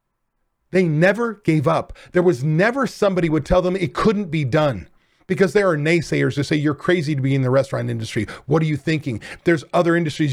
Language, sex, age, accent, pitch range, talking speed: English, male, 40-59, American, 145-195 Hz, 210 wpm